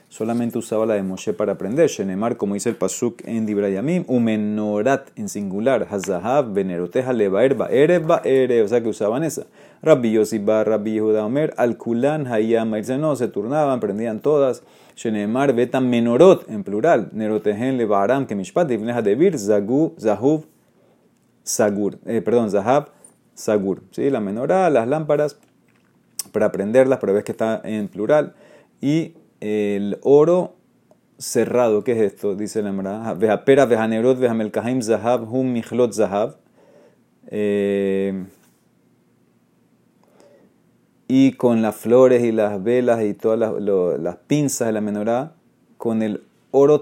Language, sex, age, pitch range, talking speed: Spanish, male, 30-49, 105-130 Hz, 130 wpm